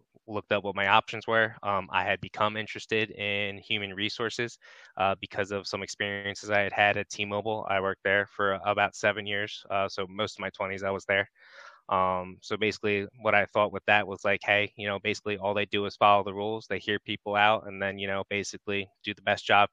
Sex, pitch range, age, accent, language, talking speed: male, 100-105 Hz, 20-39, American, English, 225 wpm